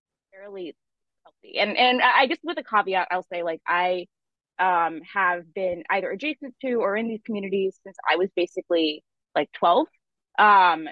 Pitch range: 175-220 Hz